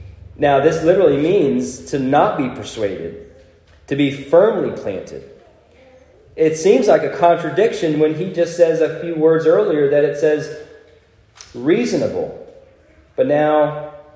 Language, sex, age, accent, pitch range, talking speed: English, male, 20-39, American, 120-165 Hz, 130 wpm